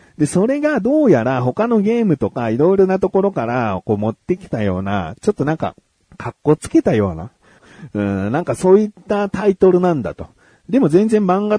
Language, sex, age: Japanese, male, 40-59